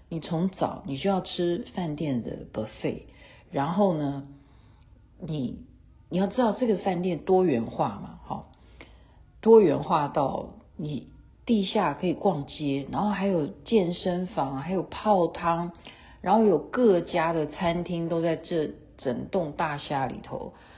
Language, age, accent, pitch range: Chinese, 50-69, native, 145-185 Hz